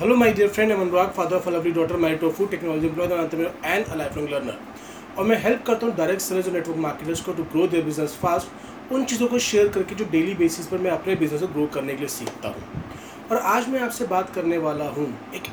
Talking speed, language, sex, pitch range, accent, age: 225 wpm, Hindi, male, 160-235 Hz, native, 30-49